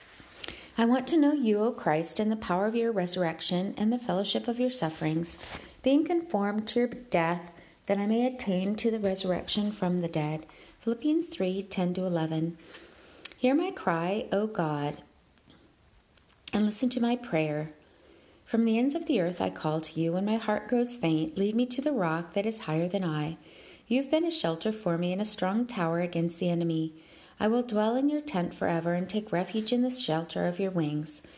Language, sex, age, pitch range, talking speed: English, female, 40-59, 170-235 Hz, 195 wpm